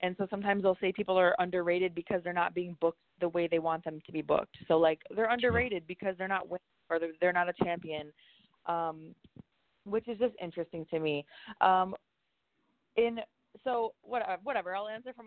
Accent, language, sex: American, English, female